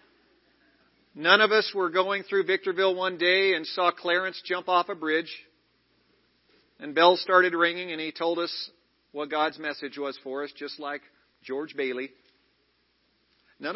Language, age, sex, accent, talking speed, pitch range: English, 50-69, male, American, 155 wpm, 150-200 Hz